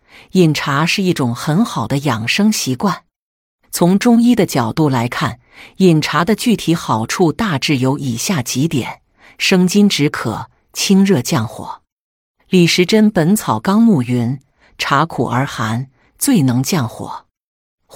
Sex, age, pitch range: female, 50-69, 130-185 Hz